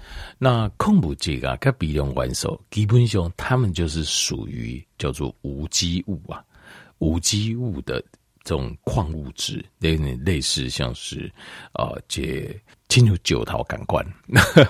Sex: male